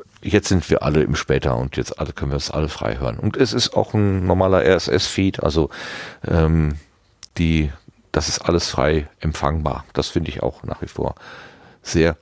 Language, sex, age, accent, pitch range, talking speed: German, male, 40-59, German, 75-105 Hz, 185 wpm